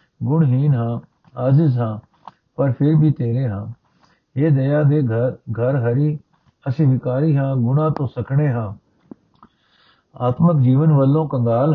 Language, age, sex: Punjabi, 50-69, male